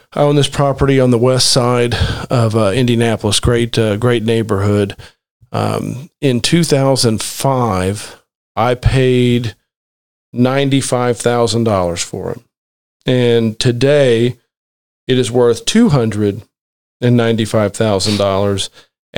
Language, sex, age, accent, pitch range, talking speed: English, male, 40-59, American, 110-130 Hz, 90 wpm